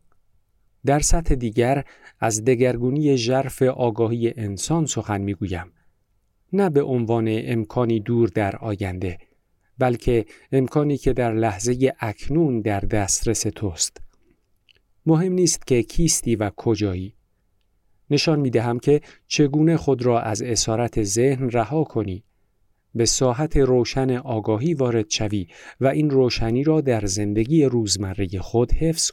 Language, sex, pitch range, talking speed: Persian, male, 105-135 Hz, 120 wpm